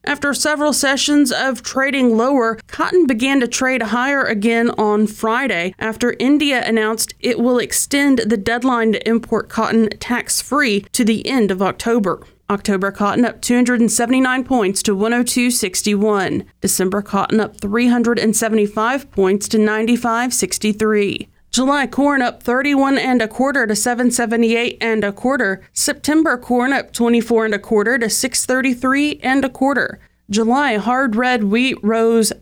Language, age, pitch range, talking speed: English, 30-49, 215-260 Hz, 135 wpm